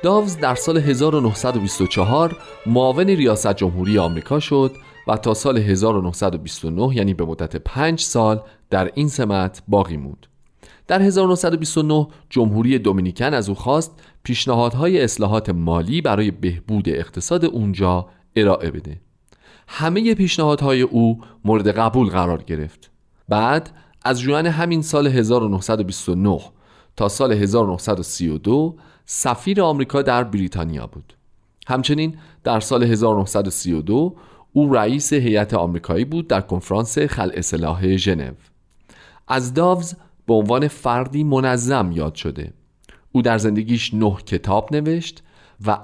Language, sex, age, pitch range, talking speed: Persian, male, 40-59, 95-145 Hz, 115 wpm